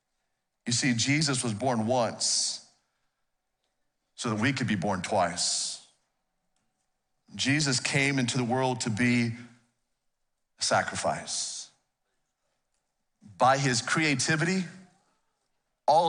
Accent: American